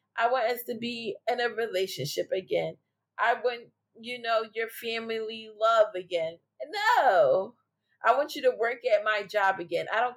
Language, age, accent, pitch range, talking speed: English, 20-39, American, 170-240 Hz, 170 wpm